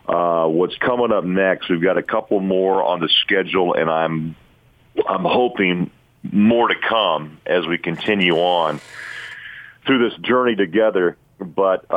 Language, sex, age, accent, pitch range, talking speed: English, male, 40-59, American, 85-100 Hz, 145 wpm